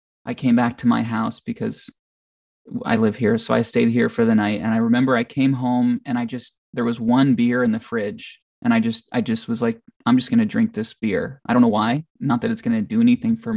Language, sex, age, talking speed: English, male, 20-39, 260 wpm